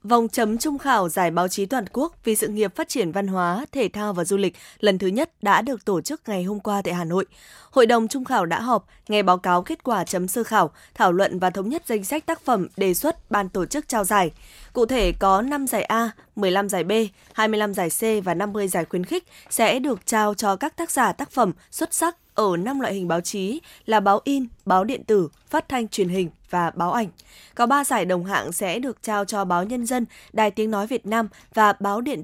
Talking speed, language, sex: 245 wpm, Vietnamese, female